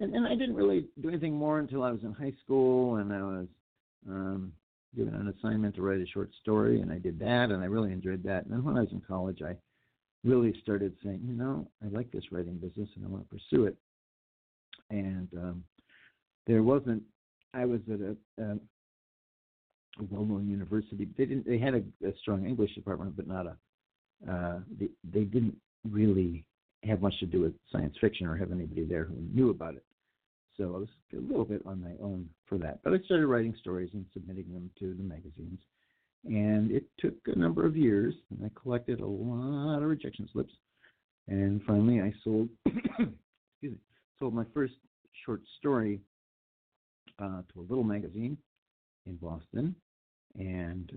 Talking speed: 190 wpm